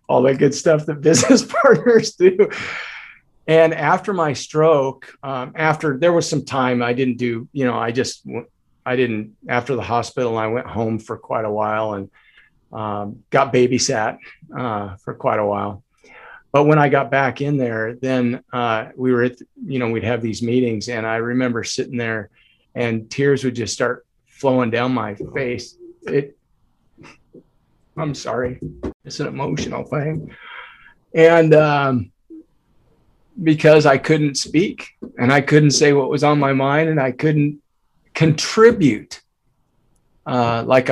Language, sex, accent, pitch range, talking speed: English, male, American, 120-150 Hz, 155 wpm